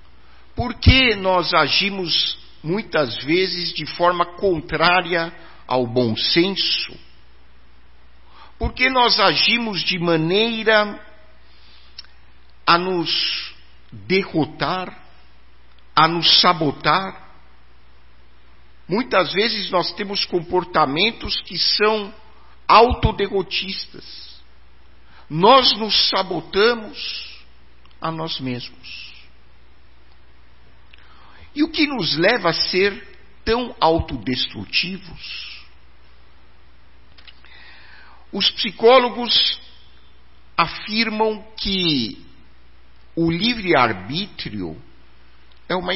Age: 50-69